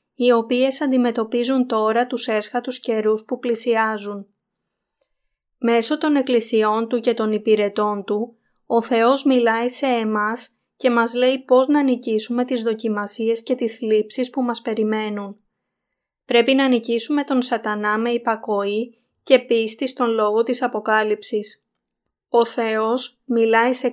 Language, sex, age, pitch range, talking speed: Greek, female, 20-39, 220-250 Hz, 135 wpm